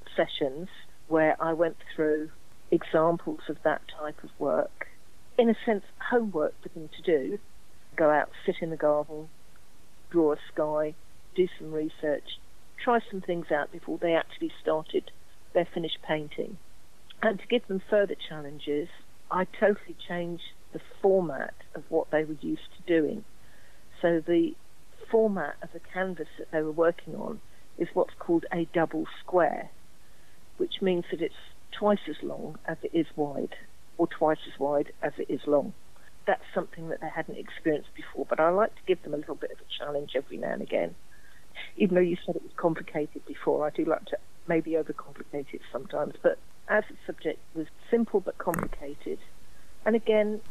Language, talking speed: English, 175 wpm